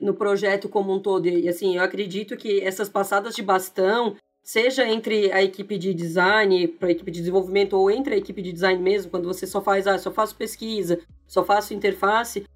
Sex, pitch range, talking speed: female, 190-225 Hz, 205 wpm